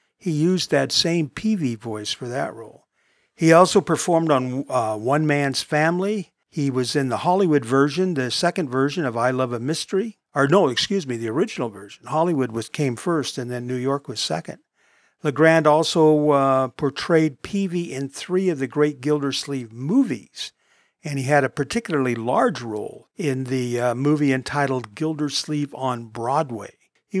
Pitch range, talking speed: 130-170 Hz, 165 wpm